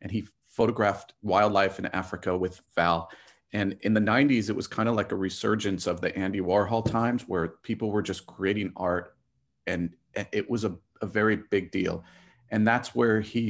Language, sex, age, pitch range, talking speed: English, male, 40-59, 90-110 Hz, 185 wpm